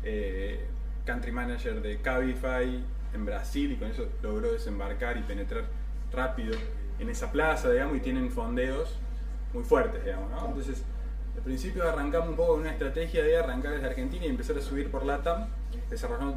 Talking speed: 170 wpm